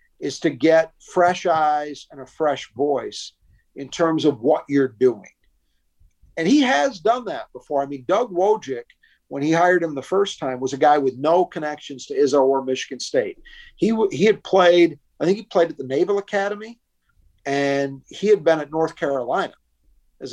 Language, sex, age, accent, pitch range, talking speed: English, male, 50-69, American, 135-180 Hz, 185 wpm